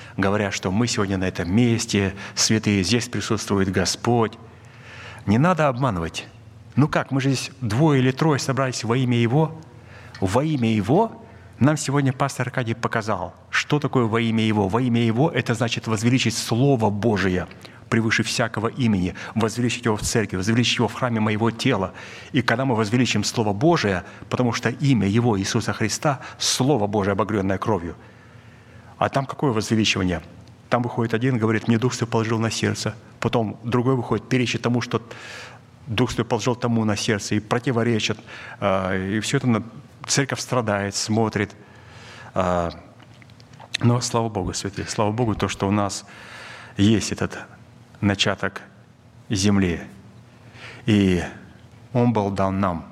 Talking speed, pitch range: 150 wpm, 100-120 Hz